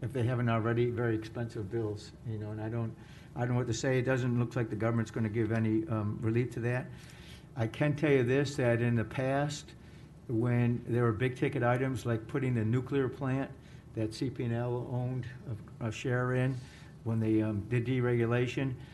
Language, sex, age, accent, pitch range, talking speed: English, male, 60-79, American, 115-130 Hz, 200 wpm